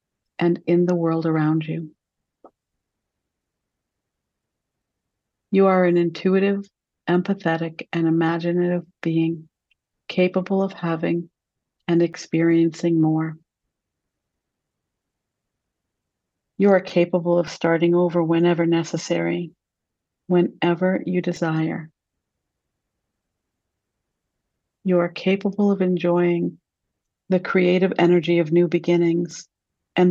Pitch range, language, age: 165-180 Hz, English, 60-79